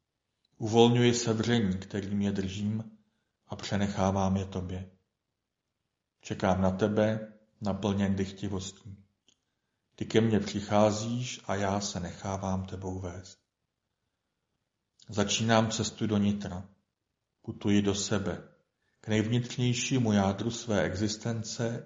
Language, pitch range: Czech, 95-110 Hz